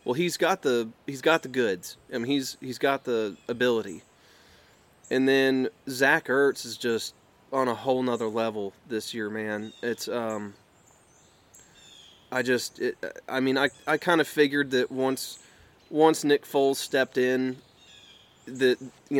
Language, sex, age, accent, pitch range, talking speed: English, male, 20-39, American, 125-145 Hz, 155 wpm